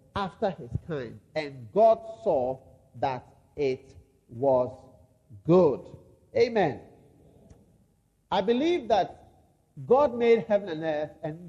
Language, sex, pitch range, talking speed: English, male, 115-155 Hz, 105 wpm